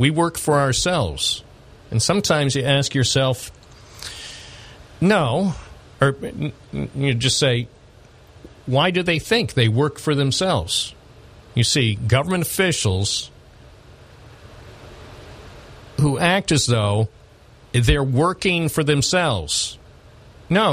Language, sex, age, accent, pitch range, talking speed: English, male, 50-69, American, 115-145 Hz, 100 wpm